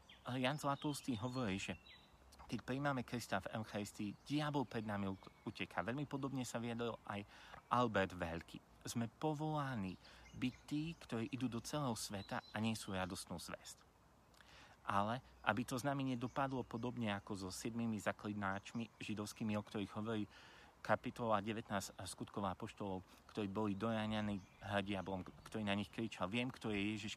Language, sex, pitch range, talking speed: Slovak, male, 100-125 Hz, 145 wpm